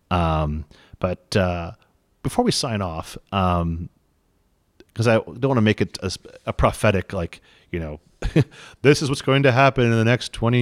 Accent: American